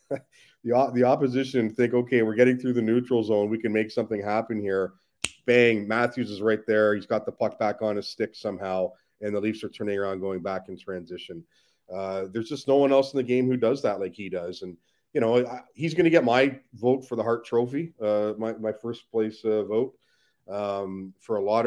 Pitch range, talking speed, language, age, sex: 100-120 Hz, 220 wpm, English, 40-59, male